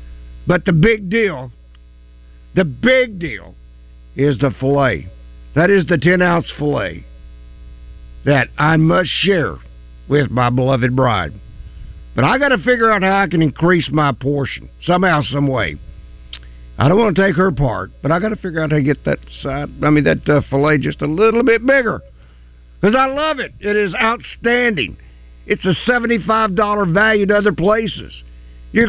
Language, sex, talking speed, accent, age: English, male, 175 wpm, American, 60-79